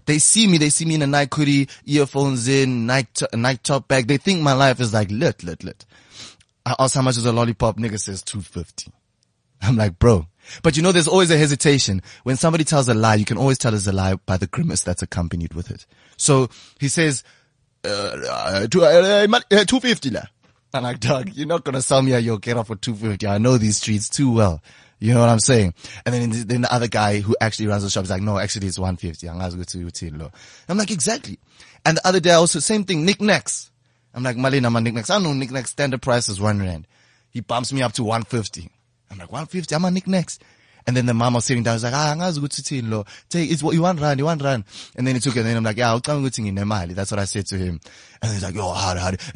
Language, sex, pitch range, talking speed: English, male, 100-140 Hz, 245 wpm